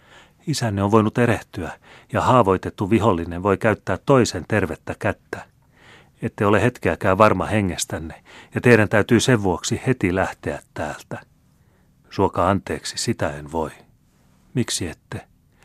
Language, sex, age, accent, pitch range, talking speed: Finnish, male, 30-49, native, 85-110 Hz, 125 wpm